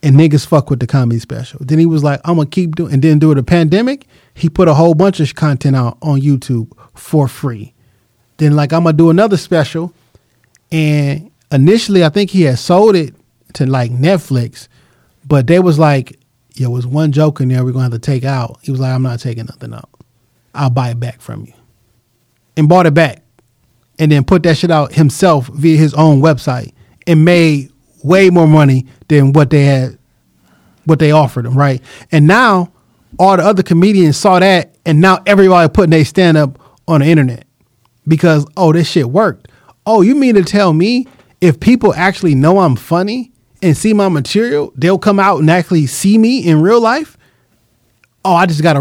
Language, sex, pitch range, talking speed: English, male, 130-175 Hz, 205 wpm